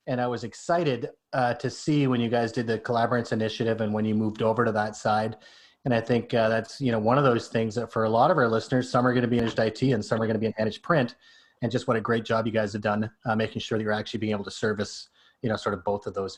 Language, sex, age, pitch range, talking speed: English, male, 30-49, 110-135 Hz, 305 wpm